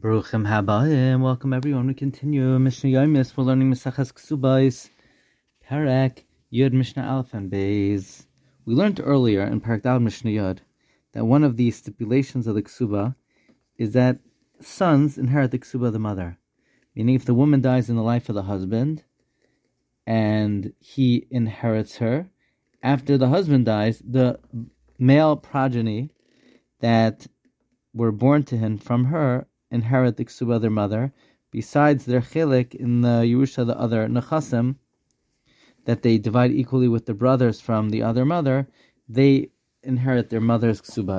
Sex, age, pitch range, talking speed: male, 30-49, 115-135 Hz, 145 wpm